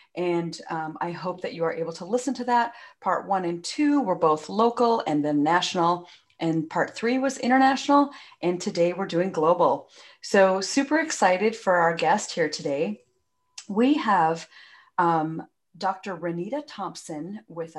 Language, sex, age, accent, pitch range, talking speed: English, female, 40-59, American, 165-245 Hz, 160 wpm